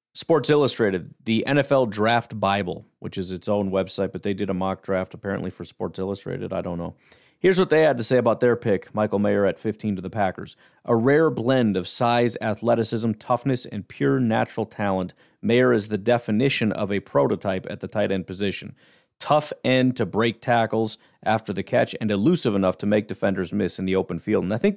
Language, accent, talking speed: English, American, 205 wpm